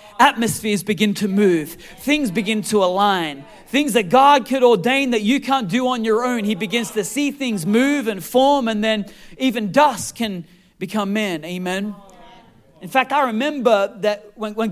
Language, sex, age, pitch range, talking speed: English, male, 40-59, 225-280 Hz, 170 wpm